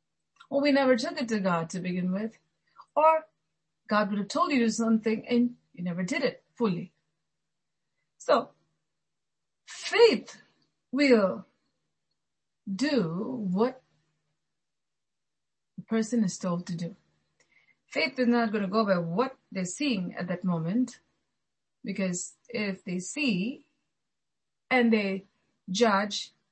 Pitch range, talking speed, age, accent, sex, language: 180-235 Hz, 120 wpm, 30-49, Indian, female, English